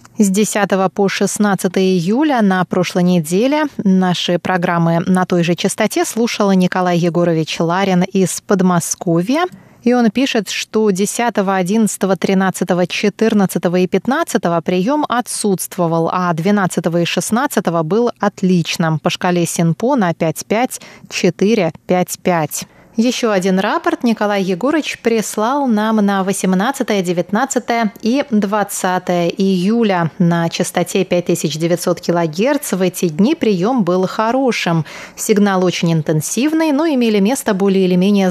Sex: female